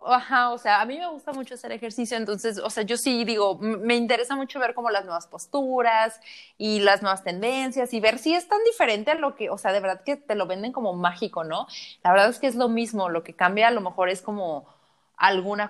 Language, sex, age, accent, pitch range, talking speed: Spanish, female, 20-39, Mexican, 205-255 Hz, 240 wpm